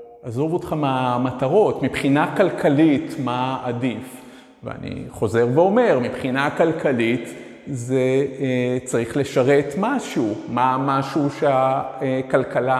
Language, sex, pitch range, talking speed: Hebrew, male, 125-150 Hz, 90 wpm